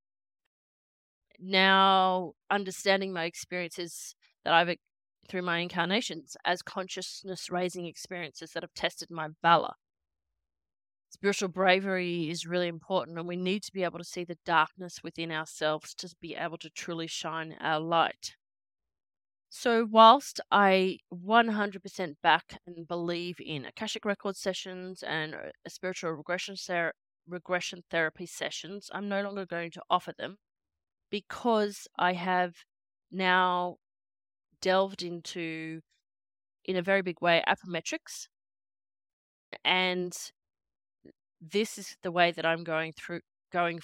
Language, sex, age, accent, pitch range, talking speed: English, female, 20-39, Australian, 160-190 Hz, 125 wpm